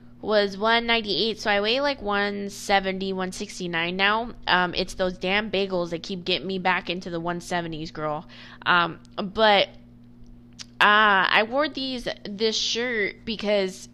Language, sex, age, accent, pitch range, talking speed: English, female, 20-39, American, 180-220 Hz, 140 wpm